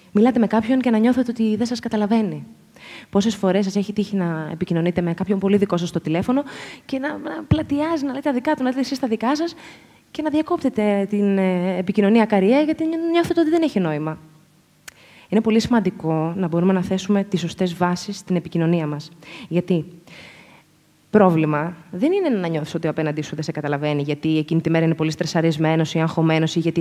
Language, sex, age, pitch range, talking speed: Greek, female, 20-39, 165-225 Hz, 195 wpm